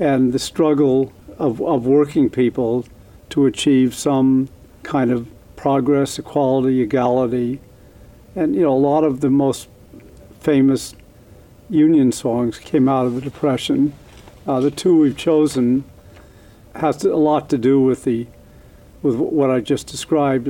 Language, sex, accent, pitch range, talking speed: English, male, American, 120-140 Hz, 145 wpm